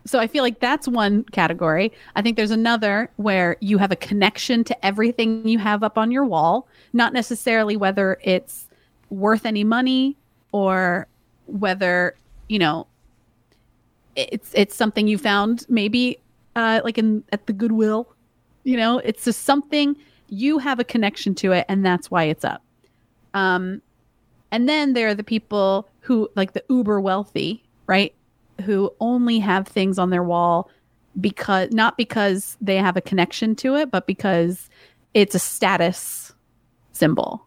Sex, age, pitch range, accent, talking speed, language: female, 30-49, 185-230 Hz, American, 155 wpm, English